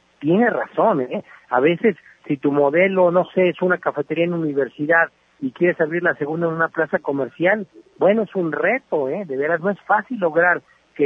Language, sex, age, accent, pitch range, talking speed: Spanish, male, 50-69, Mexican, 145-190 Hz, 195 wpm